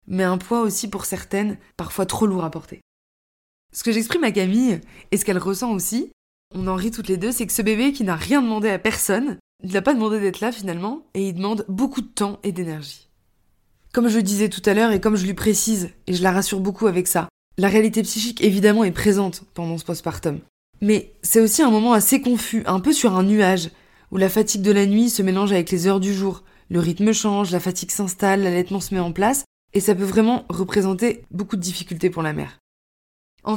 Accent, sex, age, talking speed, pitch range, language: French, female, 20-39, 230 wpm, 180-220 Hz, French